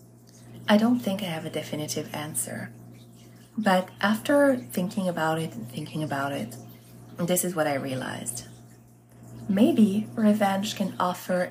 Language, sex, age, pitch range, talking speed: English, female, 20-39, 125-180 Hz, 135 wpm